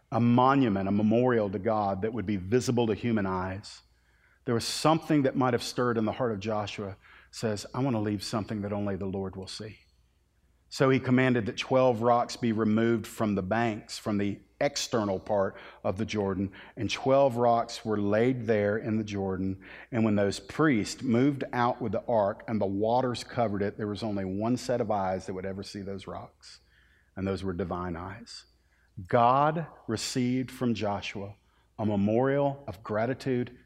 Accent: American